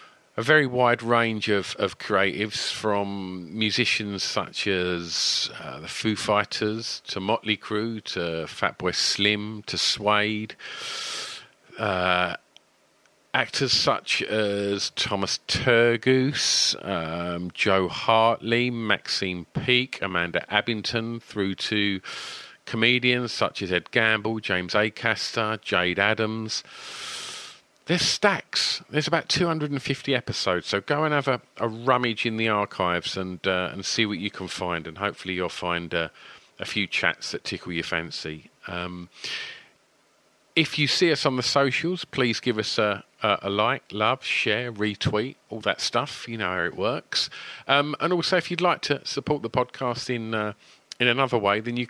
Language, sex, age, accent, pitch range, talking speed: English, male, 50-69, British, 100-125 Hz, 145 wpm